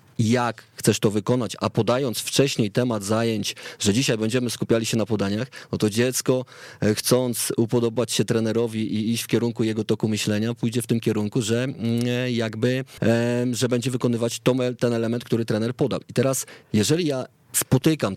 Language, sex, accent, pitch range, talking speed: Polish, male, native, 110-130 Hz, 160 wpm